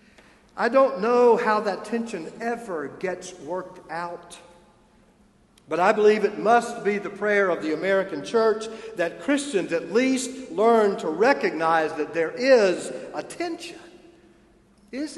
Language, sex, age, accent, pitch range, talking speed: English, male, 50-69, American, 170-210 Hz, 140 wpm